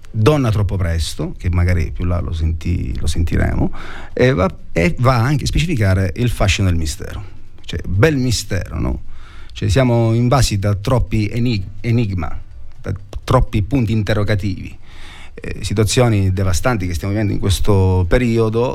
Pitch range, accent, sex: 90-115 Hz, native, male